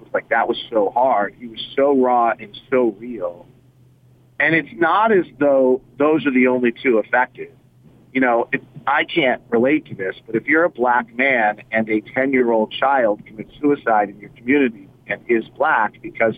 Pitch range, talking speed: 120-140 Hz, 185 wpm